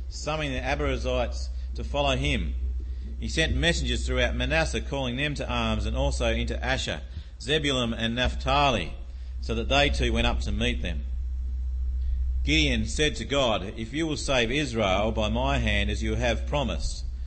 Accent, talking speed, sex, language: Australian, 165 wpm, male, English